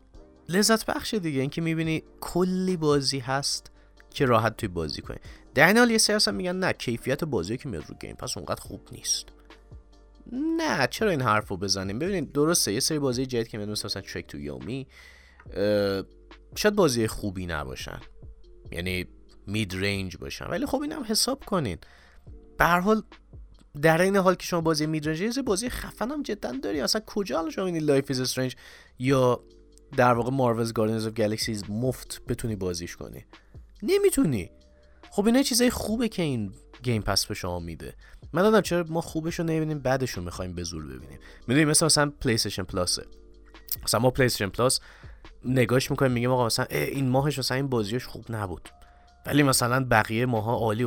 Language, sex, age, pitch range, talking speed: Persian, male, 30-49, 105-170 Hz, 165 wpm